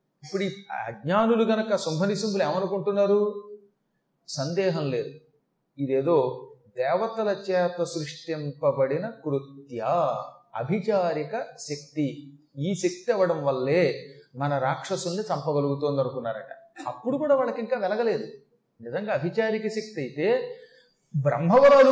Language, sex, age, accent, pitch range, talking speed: Telugu, male, 30-49, native, 155-220 Hz, 90 wpm